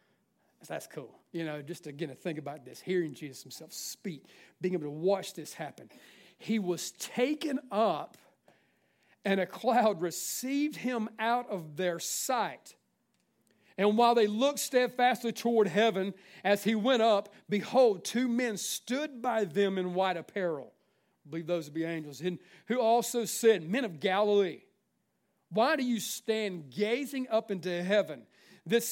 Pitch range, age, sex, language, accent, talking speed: 185-230 Hz, 40-59, male, English, American, 160 wpm